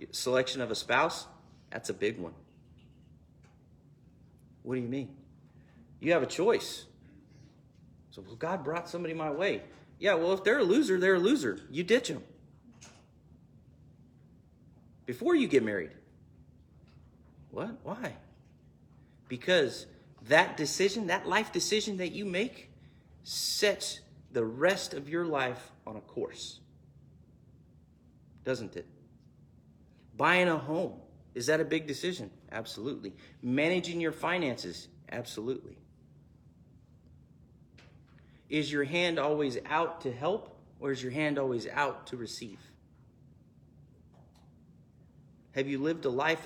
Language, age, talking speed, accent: English, 40-59, 120 wpm, American